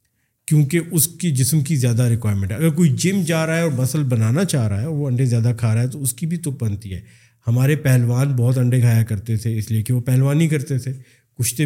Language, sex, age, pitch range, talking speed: Urdu, male, 50-69, 120-150 Hz, 250 wpm